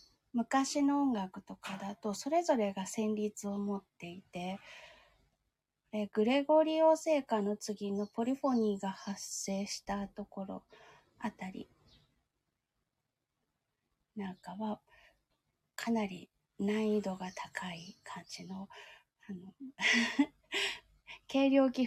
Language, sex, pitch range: Japanese, female, 195-245 Hz